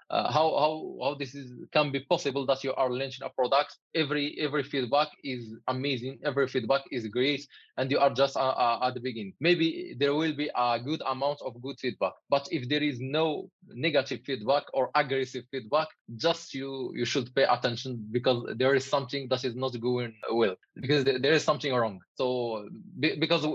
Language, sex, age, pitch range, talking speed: English, male, 20-39, 125-150 Hz, 190 wpm